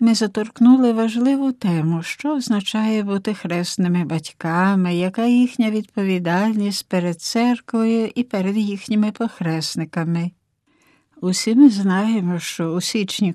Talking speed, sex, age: 110 wpm, female, 60-79